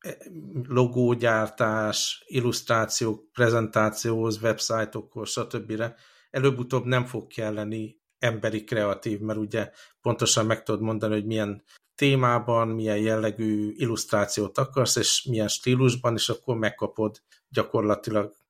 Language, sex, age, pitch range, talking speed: Hungarian, male, 50-69, 105-120 Hz, 100 wpm